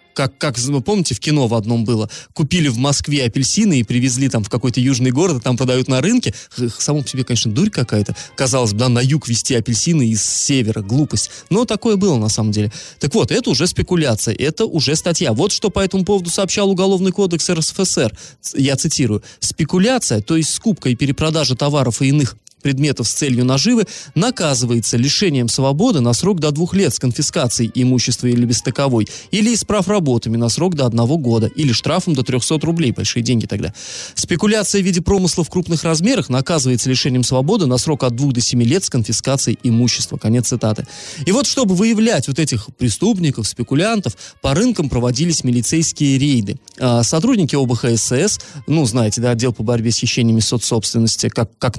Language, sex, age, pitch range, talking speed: Russian, male, 20-39, 120-165 Hz, 180 wpm